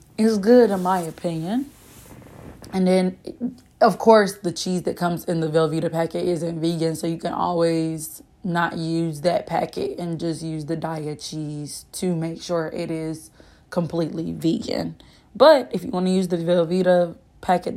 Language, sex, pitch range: English, female, 165-200 Hz